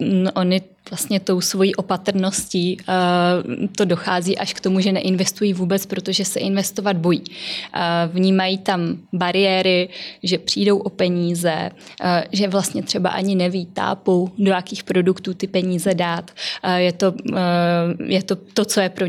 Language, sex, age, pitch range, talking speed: Czech, female, 20-39, 175-190 Hz, 140 wpm